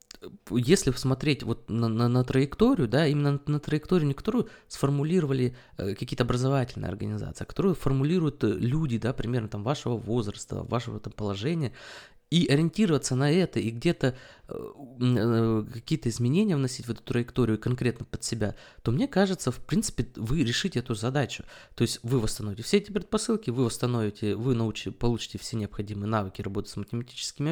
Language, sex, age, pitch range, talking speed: Russian, male, 20-39, 115-145 Hz, 160 wpm